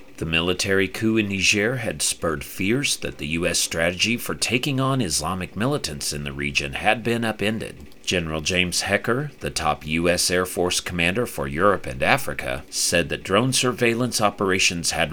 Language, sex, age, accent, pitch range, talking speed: English, male, 40-59, American, 80-110 Hz, 165 wpm